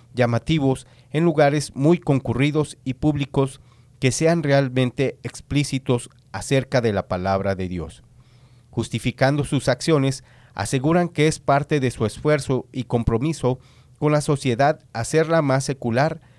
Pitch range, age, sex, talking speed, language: 120-145 Hz, 40-59, male, 130 wpm, English